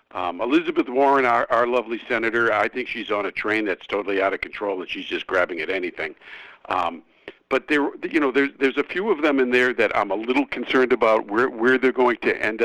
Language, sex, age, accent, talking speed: English, male, 60-79, American, 235 wpm